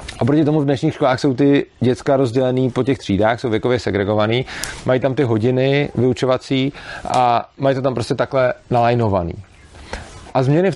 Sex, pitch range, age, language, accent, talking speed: male, 115-145 Hz, 40-59, Czech, native, 175 wpm